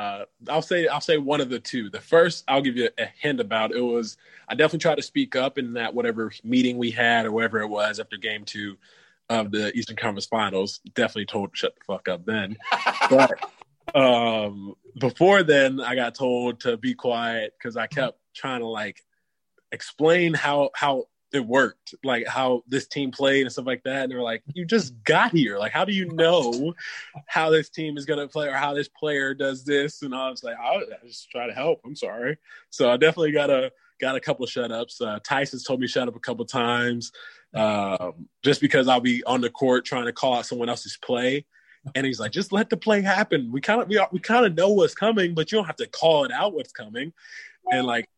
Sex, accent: male, American